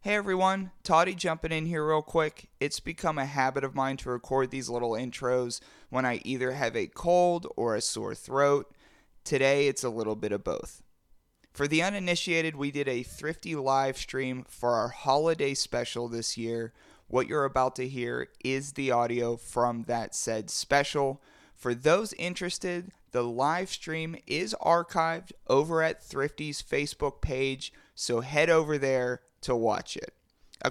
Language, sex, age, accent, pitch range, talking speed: English, male, 30-49, American, 125-155 Hz, 165 wpm